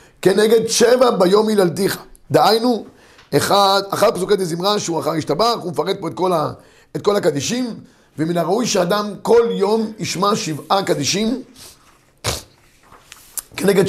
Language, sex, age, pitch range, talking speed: Hebrew, male, 50-69, 150-215 Hz, 130 wpm